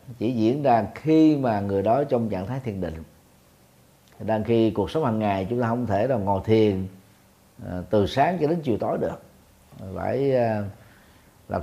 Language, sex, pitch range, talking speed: Vietnamese, male, 95-120 Hz, 175 wpm